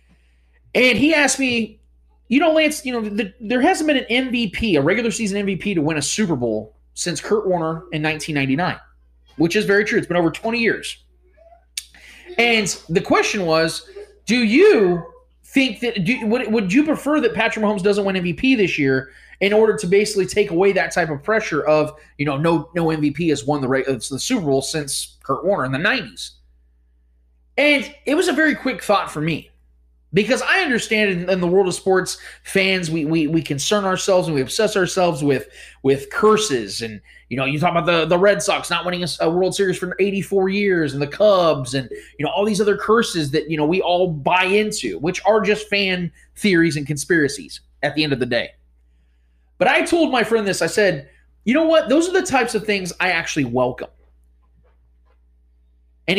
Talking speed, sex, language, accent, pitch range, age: 200 wpm, male, English, American, 140-215 Hz, 30-49